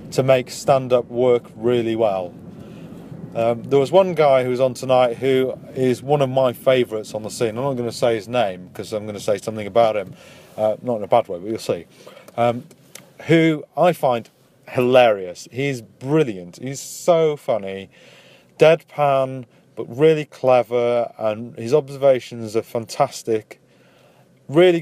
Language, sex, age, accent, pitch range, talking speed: English, male, 30-49, British, 120-155 Hz, 165 wpm